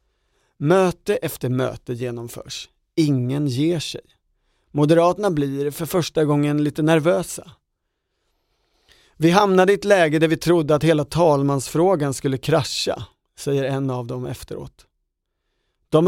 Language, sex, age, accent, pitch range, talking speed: Swedish, male, 40-59, native, 135-170 Hz, 125 wpm